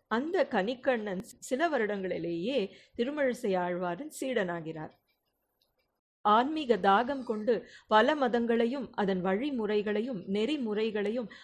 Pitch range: 195-245 Hz